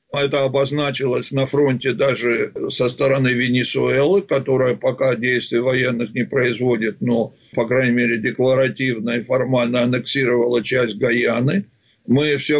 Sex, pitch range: male, 125-150 Hz